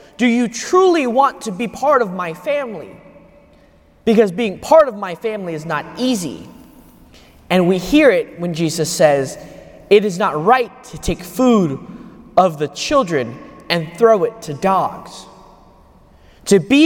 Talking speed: 155 wpm